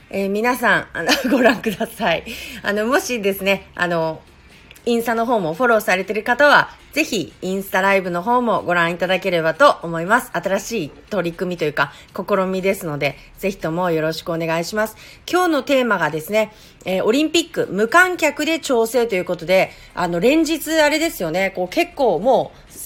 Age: 40-59